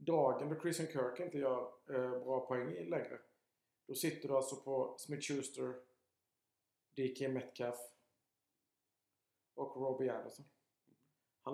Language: Swedish